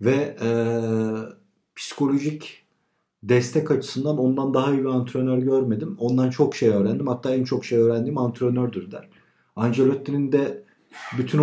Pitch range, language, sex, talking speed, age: 105-130 Hz, Turkish, male, 130 wpm, 50-69